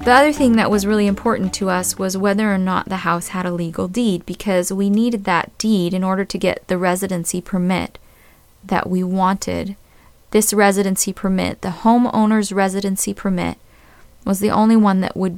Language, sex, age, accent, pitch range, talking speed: English, female, 20-39, American, 180-215 Hz, 185 wpm